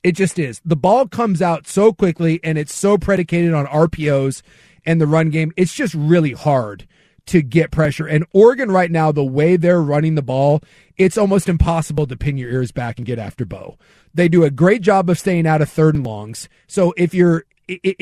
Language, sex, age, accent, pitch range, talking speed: English, male, 30-49, American, 155-190 Hz, 210 wpm